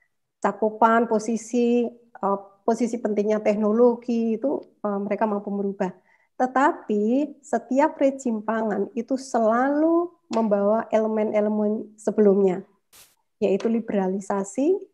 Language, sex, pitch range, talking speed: Indonesian, female, 205-255 Hz, 75 wpm